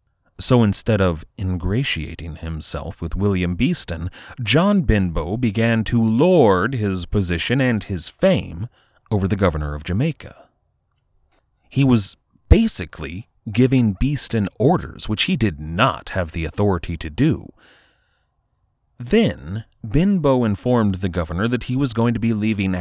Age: 30-49